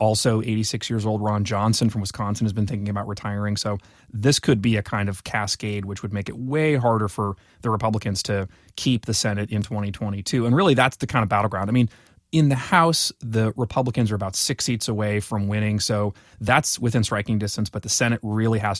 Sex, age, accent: male, 30-49, American